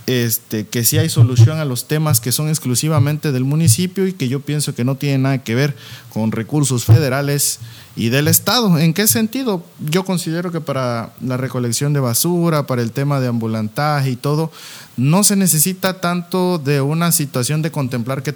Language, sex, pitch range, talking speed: Spanish, male, 125-170 Hz, 185 wpm